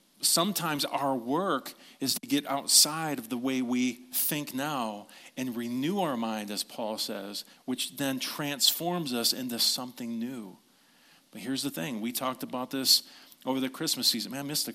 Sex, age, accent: male, 40-59, American